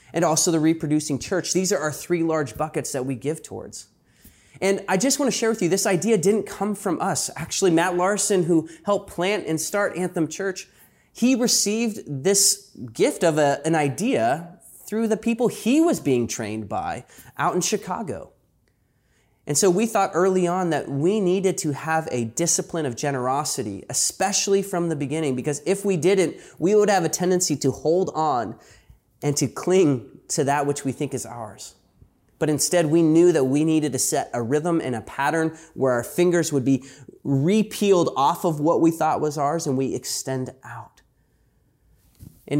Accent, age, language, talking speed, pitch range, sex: American, 20-39, English, 180 wpm, 135-180 Hz, male